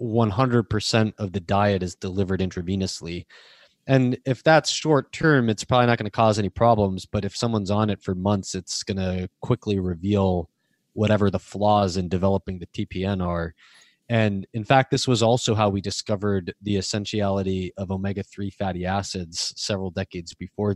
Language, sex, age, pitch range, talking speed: English, male, 20-39, 95-120 Hz, 170 wpm